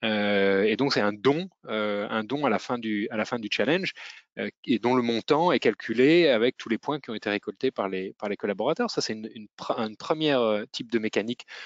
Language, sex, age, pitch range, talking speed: French, male, 30-49, 110-145 Hz, 225 wpm